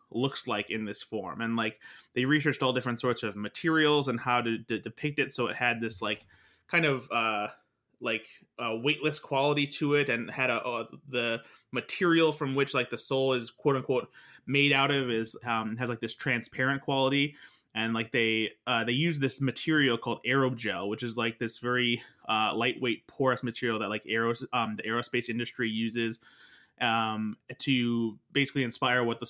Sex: male